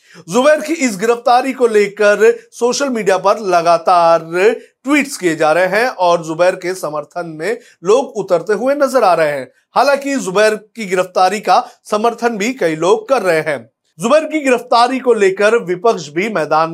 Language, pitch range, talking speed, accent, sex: Hindi, 185-255 Hz, 170 wpm, native, male